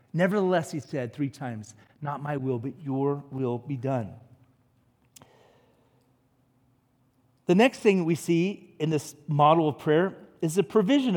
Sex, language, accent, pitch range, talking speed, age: male, English, American, 130-205 Hz, 140 wpm, 40-59